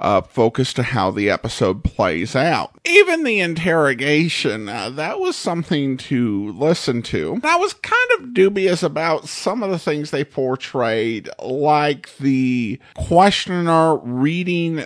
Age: 50-69